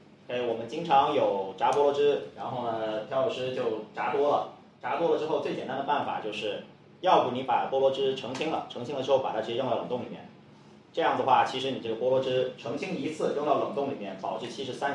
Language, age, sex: Chinese, 30-49, male